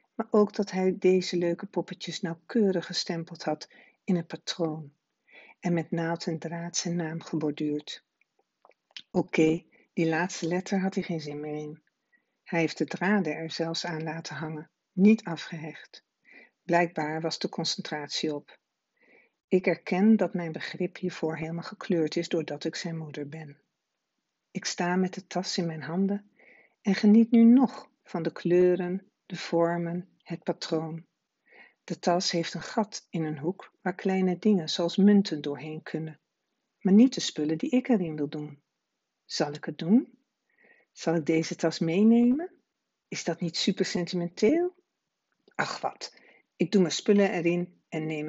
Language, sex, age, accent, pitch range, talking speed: Dutch, female, 60-79, Dutch, 160-190 Hz, 160 wpm